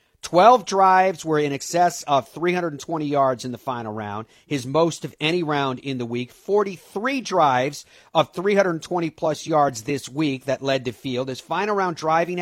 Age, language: 50-69, English